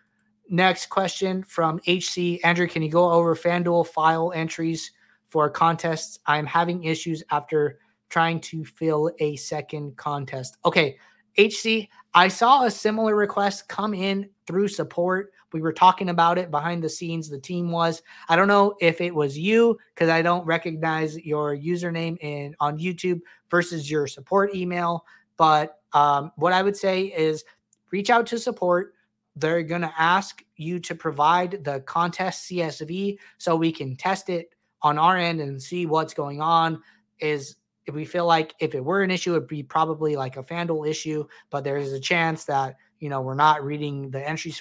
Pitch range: 150-180 Hz